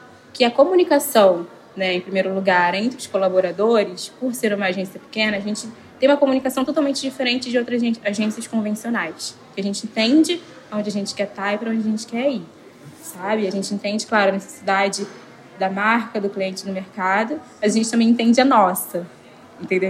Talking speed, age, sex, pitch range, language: 185 wpm, 10-29, female, 200-255 Hz, Portuguese